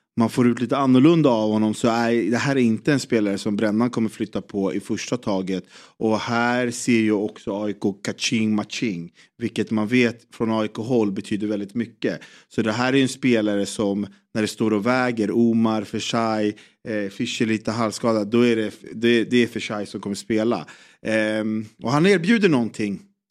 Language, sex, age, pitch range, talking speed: Swedish, male, 30-49, 110-135 Hz, 185 wpm